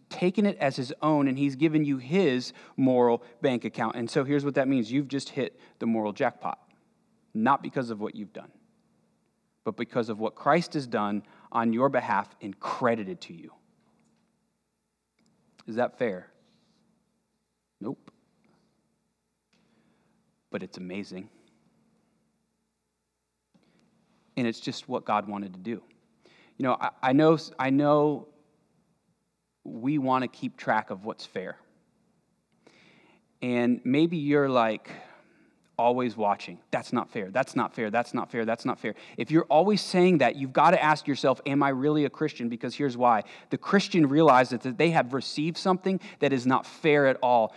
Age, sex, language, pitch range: 30-49, male, English, 125-160 Hz